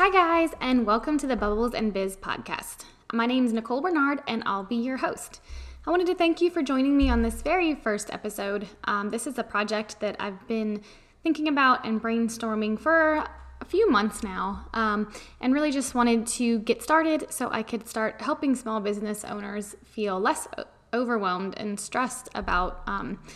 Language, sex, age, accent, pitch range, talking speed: English, female, 10-29, American, 205-255 Hz, 190 wpm